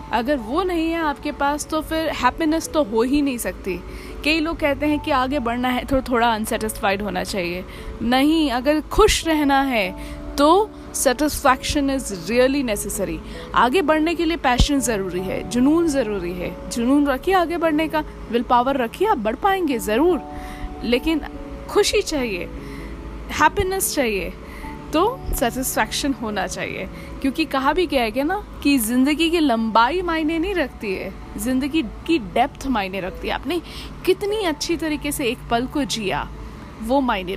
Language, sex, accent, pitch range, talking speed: Hindi, female, native, 225-310 Hz, 160 wpm